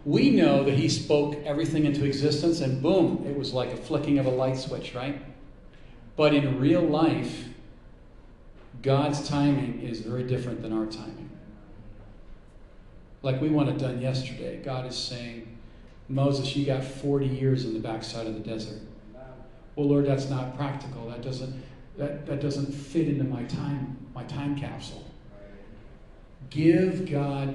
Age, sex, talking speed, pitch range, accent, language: 40-59, male, 155 wpm, 120-150 Hz, American, English